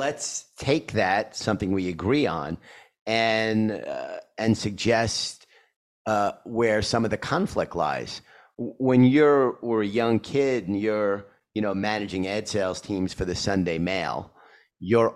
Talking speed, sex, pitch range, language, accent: 145 wpm, male, 90-110 Hz, English, American